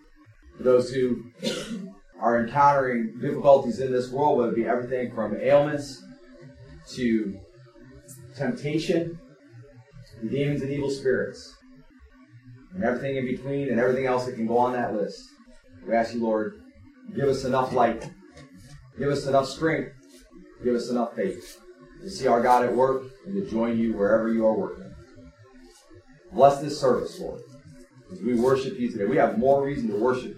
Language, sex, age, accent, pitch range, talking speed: English, male, 30-49, American, 115-140 Hz, 155 wpm